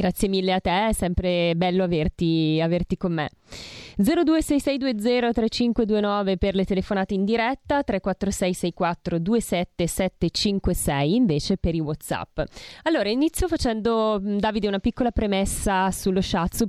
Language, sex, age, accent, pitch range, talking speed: Italian, female, 20-39, native, 175-215 Hz, 110 wpm